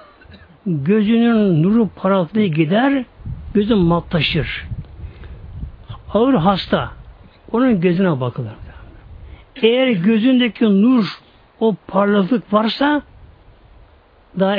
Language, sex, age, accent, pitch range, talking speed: Turkish, male, 60-79, native, 150-220 Hz, 75 wpm